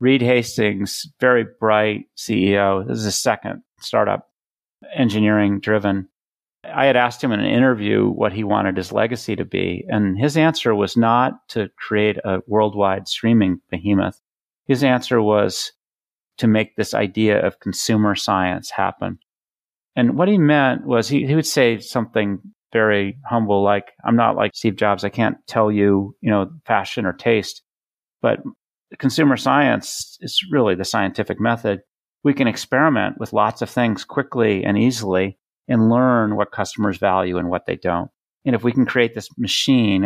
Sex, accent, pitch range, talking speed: male, American, 100-125 Hz, 165 wpm